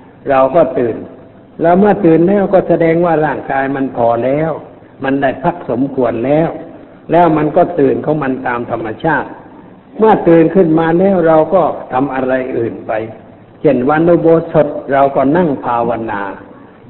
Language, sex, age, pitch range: Thai, male, 60-79, 130-160 Hz